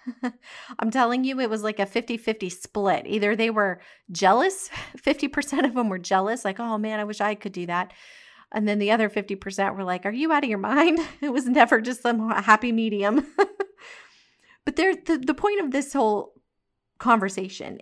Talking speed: 185 wpm